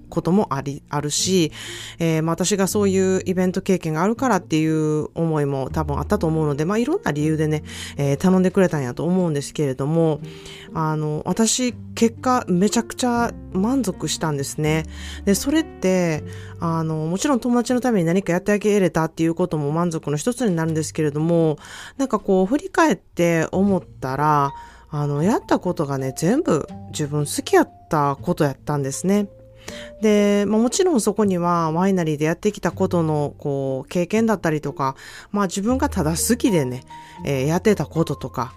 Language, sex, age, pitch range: Japanese, female, 20-39, 150-210 Hz